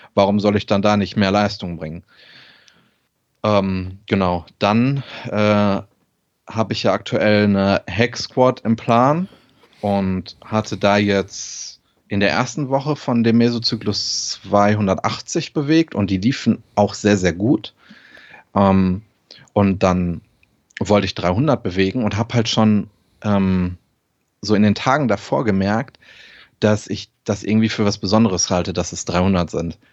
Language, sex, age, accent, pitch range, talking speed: German, male, 30-49, German, 95-115 Hz, 140 wpm